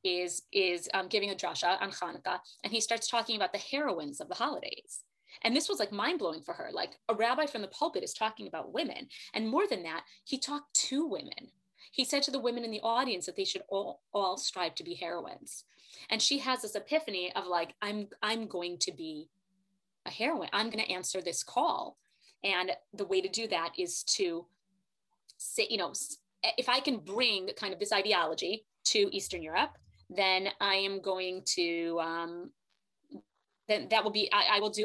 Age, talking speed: 30-49, 200 wpm